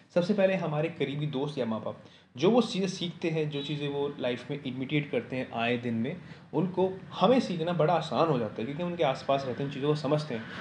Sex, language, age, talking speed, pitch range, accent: male, Hindi, 20-39, 240 wpm, 130-165 Hz, native